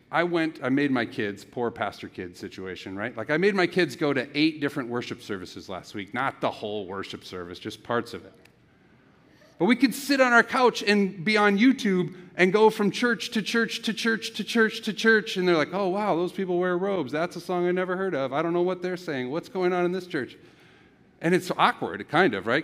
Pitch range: 140-205 Hz